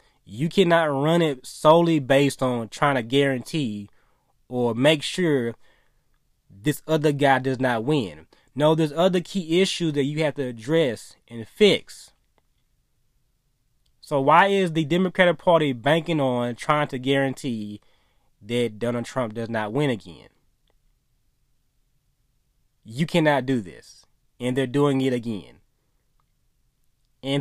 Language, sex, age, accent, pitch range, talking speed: English, male, 20-39, American, 125-155 Hz, 130 wpm